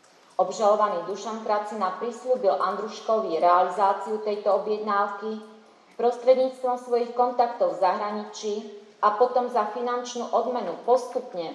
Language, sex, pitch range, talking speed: Slovak, female, 210-240 Hz, 100 wpm